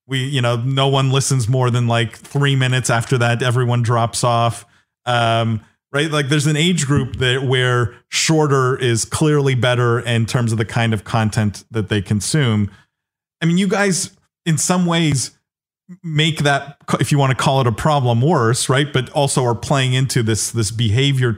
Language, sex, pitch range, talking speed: English, male, 120-145 Hz, 185 wpm